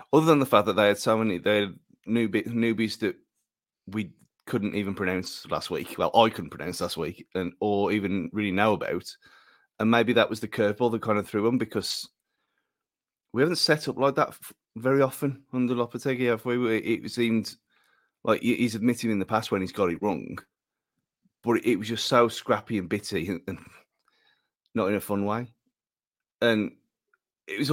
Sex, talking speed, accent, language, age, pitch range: male, 185 wpm, British, English, 30-49, 100-120 Hz